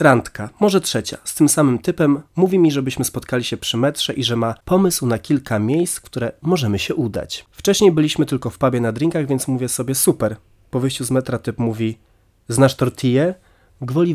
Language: Polish